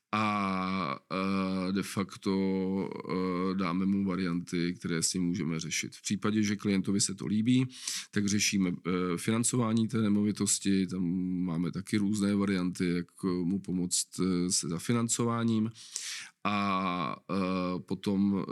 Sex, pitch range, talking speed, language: male, 95-105 Hz, 115 wpm, Czech